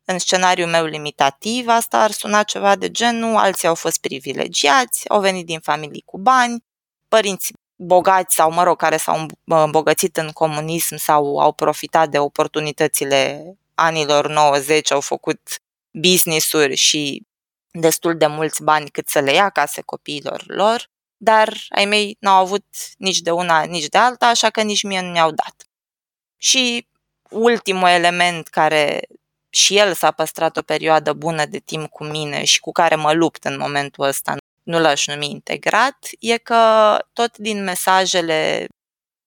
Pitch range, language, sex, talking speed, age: 155-210 Hz, Romanian, female, 155 wpm, 20-39